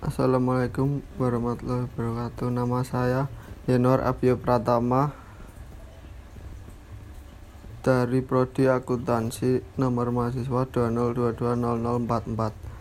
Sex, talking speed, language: male, 60 wpm, Indonesian